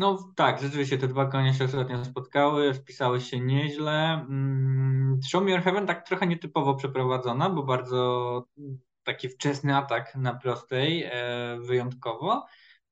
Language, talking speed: Polish, 125 wpm